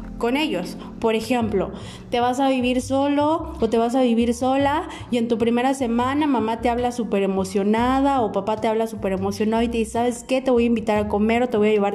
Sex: female